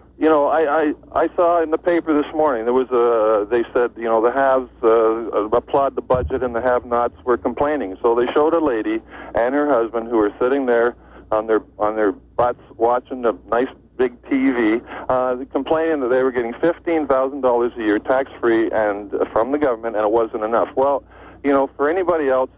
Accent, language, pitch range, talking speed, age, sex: American, English, 115-150 Hz, 210 wpm, 50-69, male